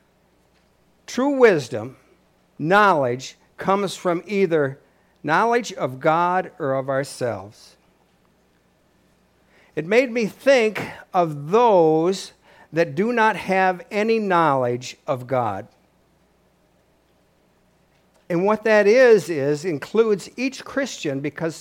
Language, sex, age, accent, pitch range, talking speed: English, male, 60-79, American, 140-200 Hz, 95 wpm